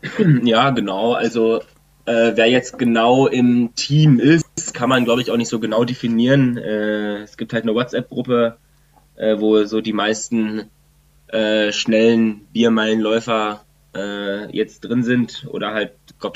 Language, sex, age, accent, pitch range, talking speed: German, male, 20-39, German, 105-120 Hz, 145 wpm